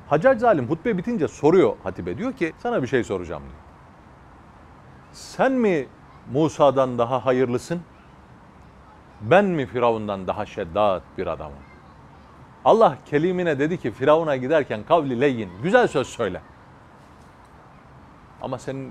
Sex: male